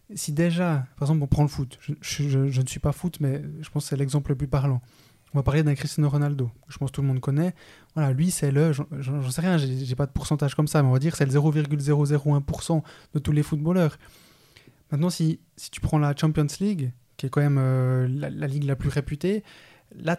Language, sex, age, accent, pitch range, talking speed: French, male, 20-39, French, 140-165 Hz, 260 wpm